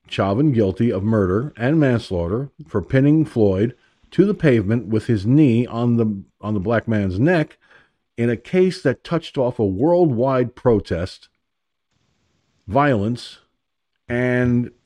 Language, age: English, 50-69